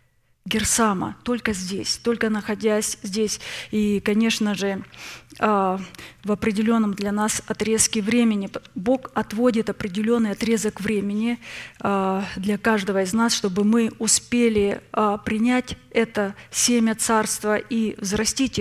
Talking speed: 105 wpm